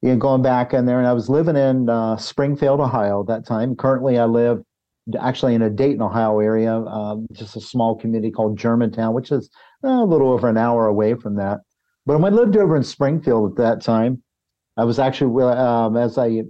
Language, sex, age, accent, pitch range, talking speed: English, male, 50-69, American, 115-130 Hz, 215 wpm